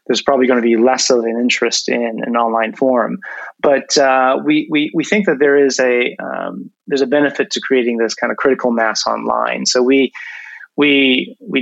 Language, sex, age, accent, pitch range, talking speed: English, male, 30-49, American, 120-140 Hz, 200 wpm